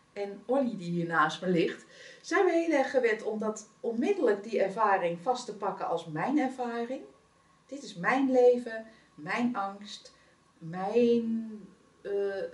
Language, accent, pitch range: Dutch, Dutch, 180-235 Hz